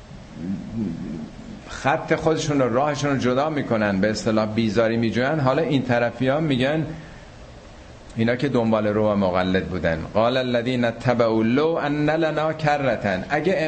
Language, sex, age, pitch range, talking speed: Persian, male, 50-69, 100-130 Hz, 105 wpm